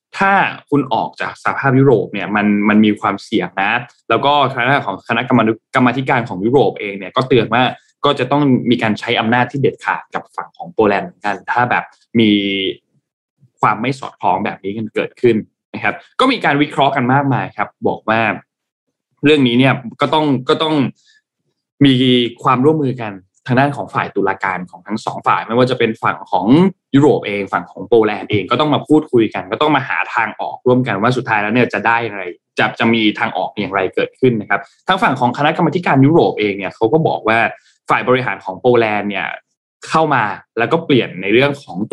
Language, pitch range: Thai, 110-140 Hz